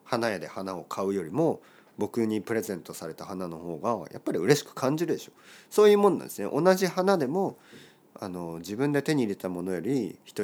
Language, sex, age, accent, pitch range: Japanese, male, 40-59, native, 90-145 Hz